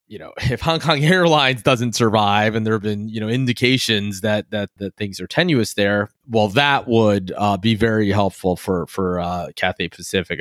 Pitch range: 100-125 Hz